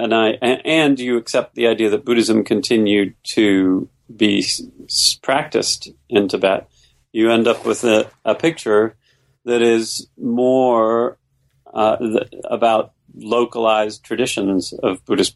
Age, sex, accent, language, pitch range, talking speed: 40-59, male, American, English, 100-130 Hz, 130 wpm